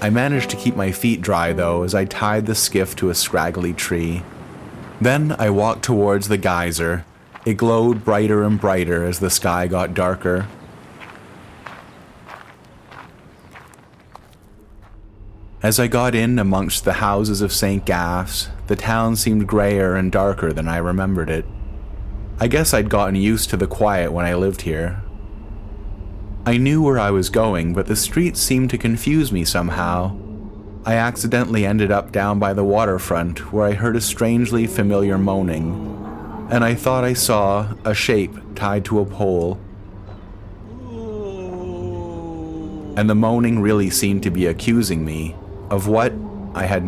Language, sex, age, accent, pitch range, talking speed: English, male, 30-49, American, 90-110 Hz, 150 wpm